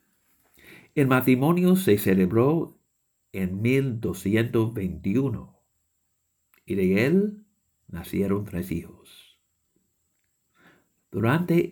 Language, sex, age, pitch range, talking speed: English, male, 60-79, 90-125 Hz, 65 wpm